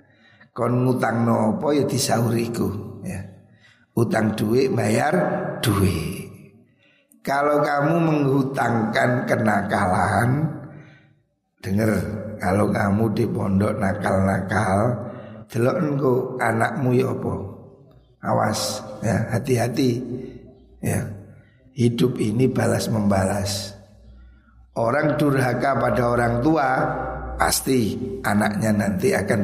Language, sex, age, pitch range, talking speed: Indonesian, male, 60-79, 105-140 Hz, 80 wpm